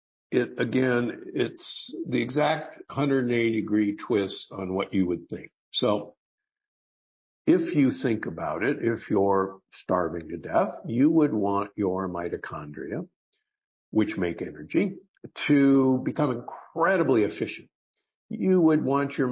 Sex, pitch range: male, 95-135 Hz